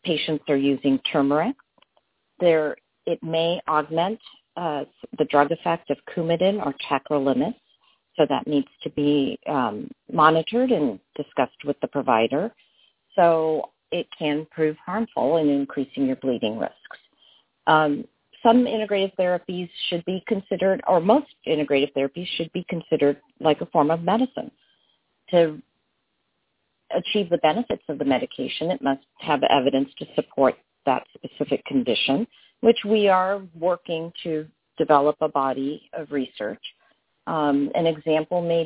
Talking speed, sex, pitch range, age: 135 wpm, female, 145-185 Hz, 50-69